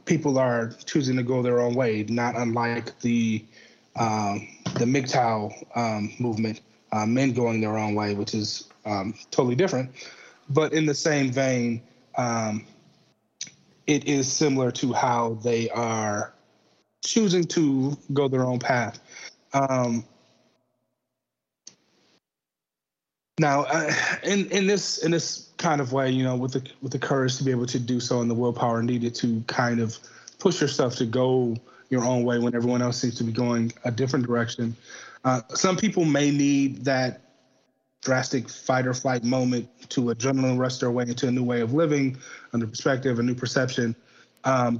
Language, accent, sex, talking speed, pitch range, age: English, American, male, 160 wpm, 120-135 Hz, 30-49